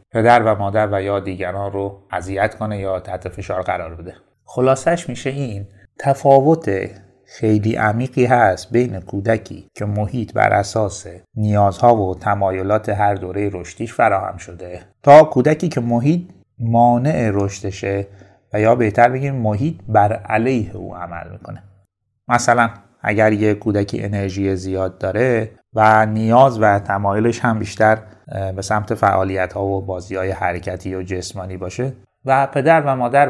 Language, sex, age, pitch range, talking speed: Persian, male, 30-49, 100-125 Hz, 140 wpm